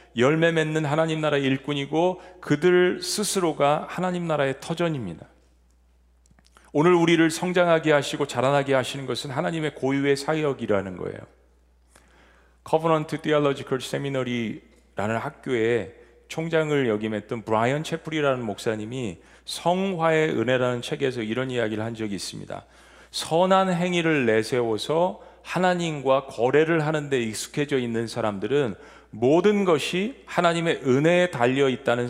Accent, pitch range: native, 105-160 Hz